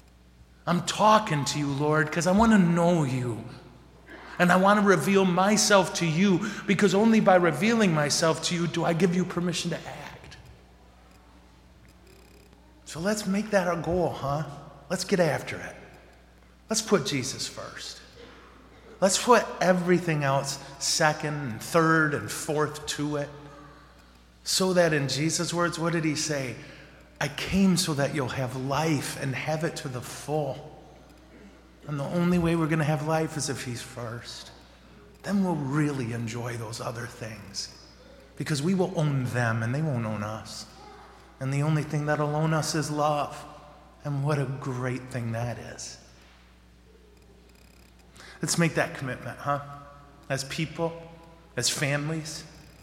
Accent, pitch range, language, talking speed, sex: American, 120-165 Hz, English, 155 wpm, male